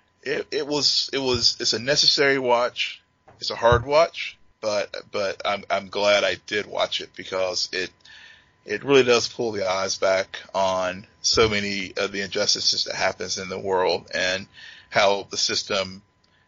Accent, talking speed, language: American, 170 wpm, English